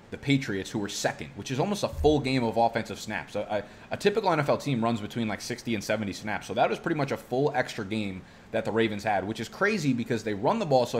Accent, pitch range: American, 105-130 Hz